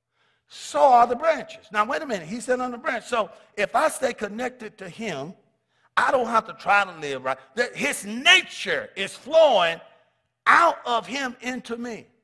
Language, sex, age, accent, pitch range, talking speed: English, male, 50-69, American, 205-285 Hz, 180 wpm